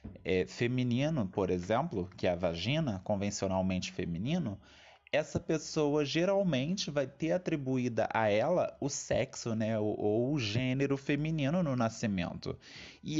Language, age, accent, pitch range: Portuguese, 20-39, Brazilian, 110-155 Hz